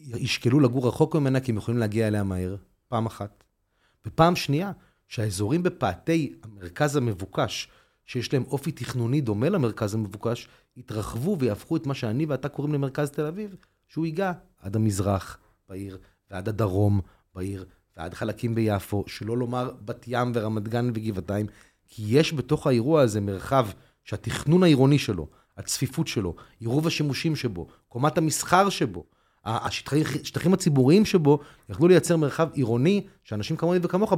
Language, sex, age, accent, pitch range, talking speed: Hebrew, male, 30-49, native, 105-150 Hz, 140 wpm